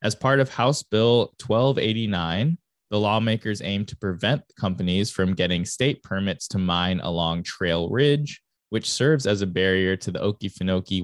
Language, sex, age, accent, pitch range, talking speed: English, male, 20-39, American, 90-110 Hz, 160 wpm